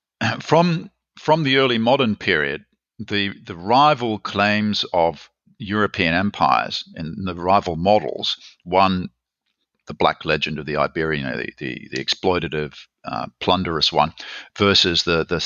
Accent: Australian